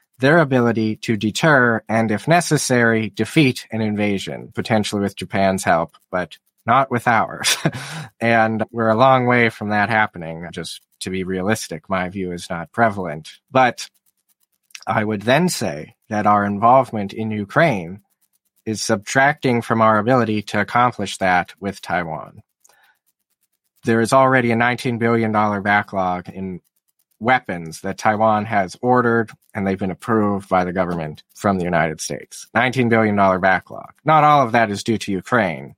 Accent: American